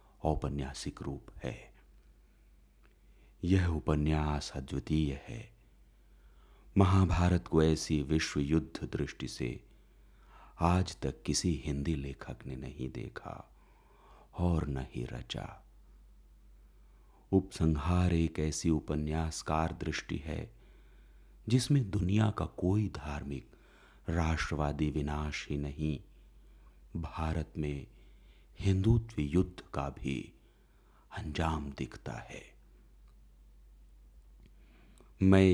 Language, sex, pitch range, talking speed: Hindi, male, 70-85 Hz, 85 wpm